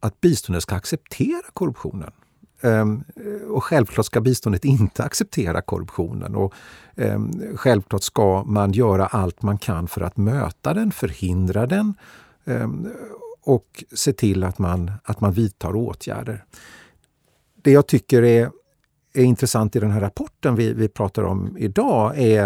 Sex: male